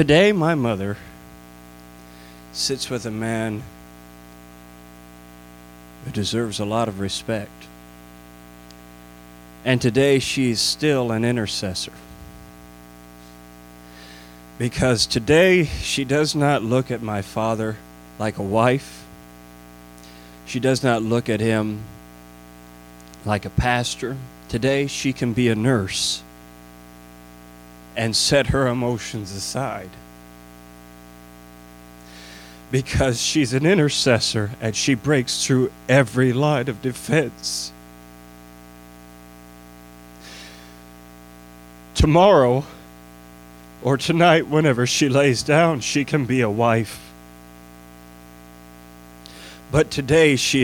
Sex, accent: male, American